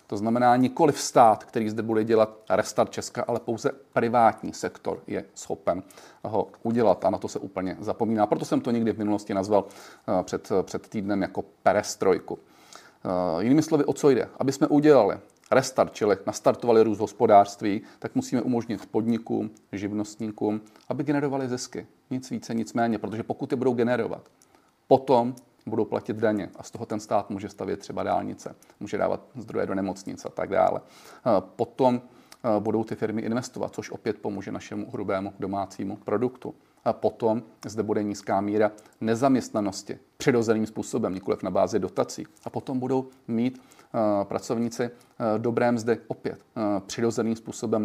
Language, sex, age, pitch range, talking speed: Czech, male, 40-59, 105-120 Hz, 155 wpm